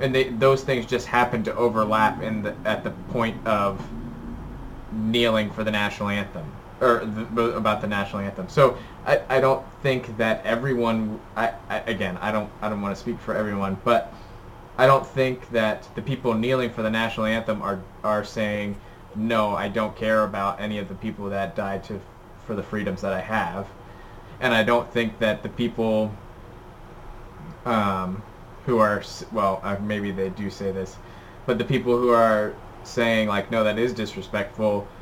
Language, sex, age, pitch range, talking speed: English, male, 20-39, 100-120 Hz, 180 wpm